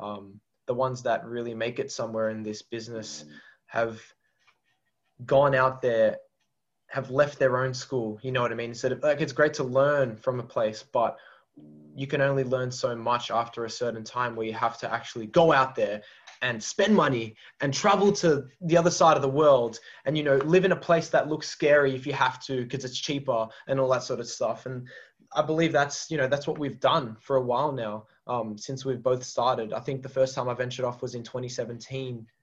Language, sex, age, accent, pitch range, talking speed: English, male, 20-39, Australian, 120-140 Hz, 215 wpm